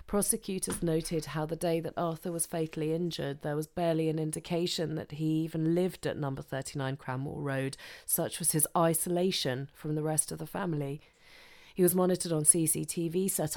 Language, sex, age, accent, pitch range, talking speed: English, female, 30-49, British, 150-170 Hz, 175 wpm